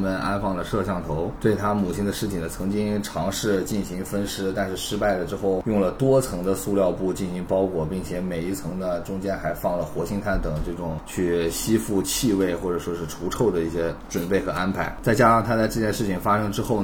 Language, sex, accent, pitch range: Chinese, male, native, 85-100 Hz